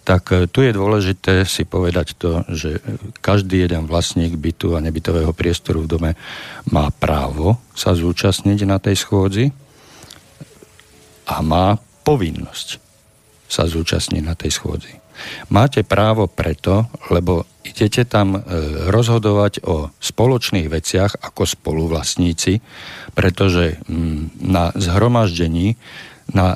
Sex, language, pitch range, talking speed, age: male, Slovak, 90-115 Hz, 110 wpm, 50-69